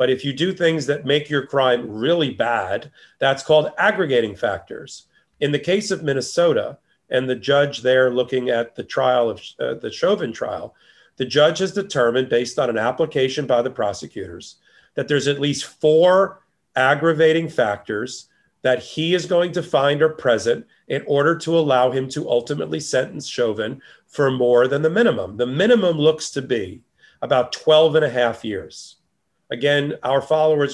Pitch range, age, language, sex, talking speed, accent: 125-160 Hz, 40-59, English, male, 170 wpm, American